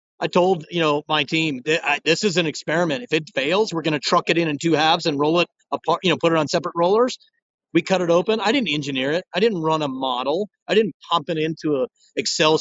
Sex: male